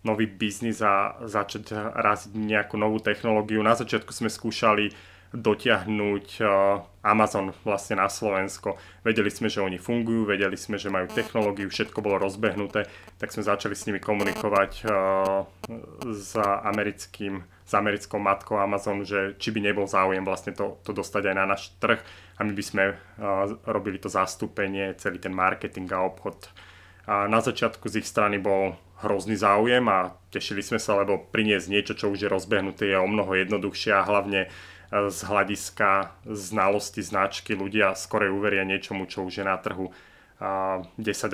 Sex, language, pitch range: male, Slovak, 95-105 Hz